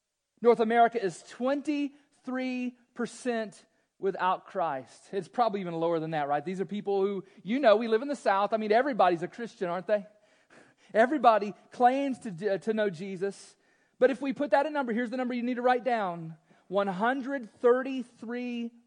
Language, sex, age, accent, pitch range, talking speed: English, male, 40-59, American, 175-245 Hz, 170 wpm